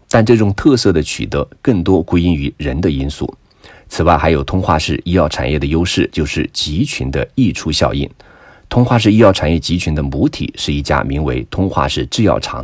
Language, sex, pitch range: Chinese, male, 75-100 Hz